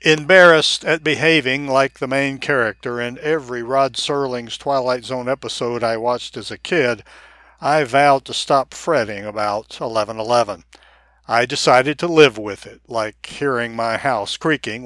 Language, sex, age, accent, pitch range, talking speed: English, male, 60-79, American, 120-150 Hz, 150 wpm